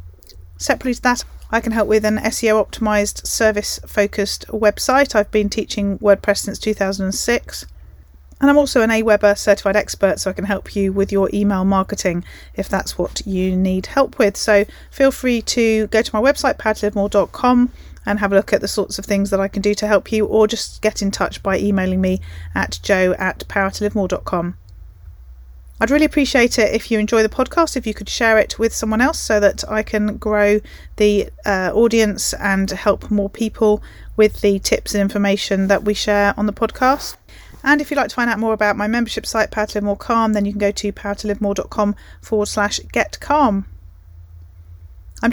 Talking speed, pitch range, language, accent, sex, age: 195 wpm, 195-225 Hz, English, British, female, 30-49